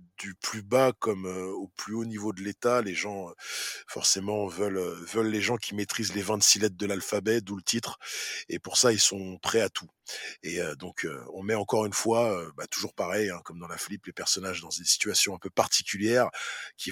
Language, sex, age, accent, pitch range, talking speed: French, male, 20-39, French, 105-130 Hz, 225 wpm